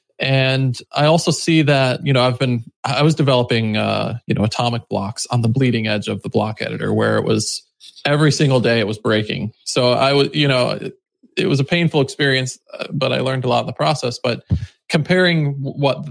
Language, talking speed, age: English, 205 wpm, 20-39